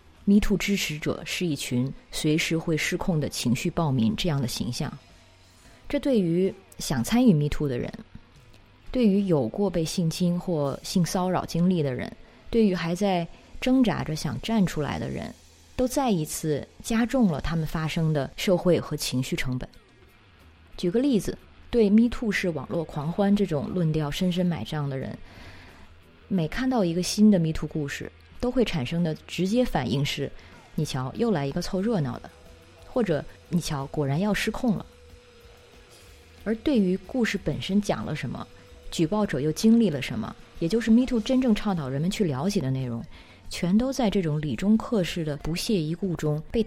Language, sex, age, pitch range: Chinese, female, 20-39, 140-200 Hz